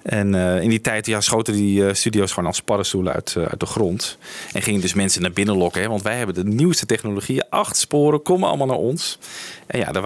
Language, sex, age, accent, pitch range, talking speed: Dutch, male, 40-59, Dutch, 95-145 Hz, 225 wpm